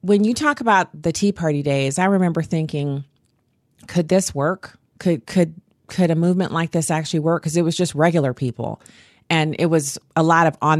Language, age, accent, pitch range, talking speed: English, 30-49, American, 150-185 Hz, 200 wpm